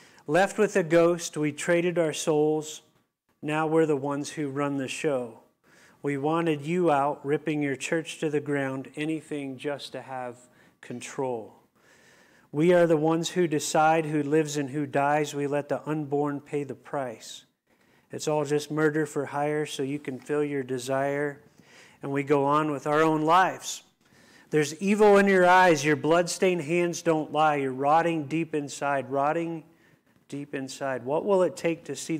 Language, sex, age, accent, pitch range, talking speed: English, male, 40-59, American, 140-160 Hz, 170 wpm